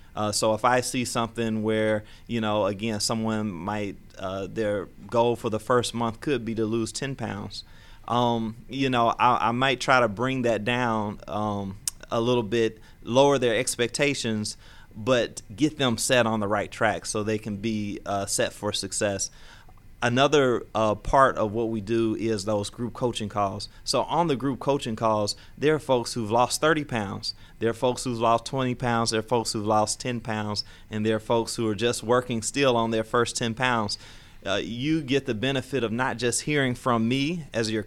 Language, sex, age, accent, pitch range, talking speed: English, male, 30-49, American, 110-125 Hz, 200 wpm